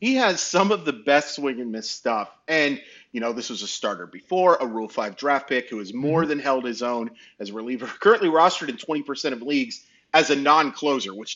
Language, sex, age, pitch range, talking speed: English, male, 30-49, 115-155 Hz, 225 wpm